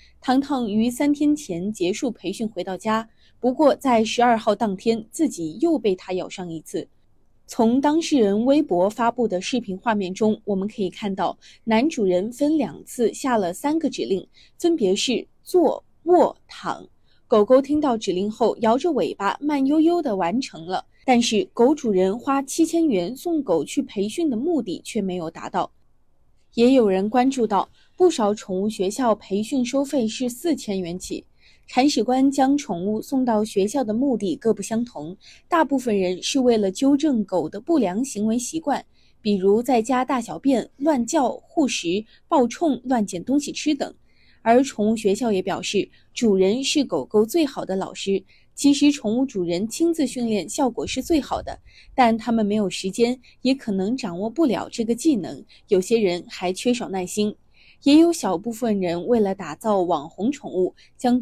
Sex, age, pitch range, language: female, 20-39, 200-275 Hz, Chinese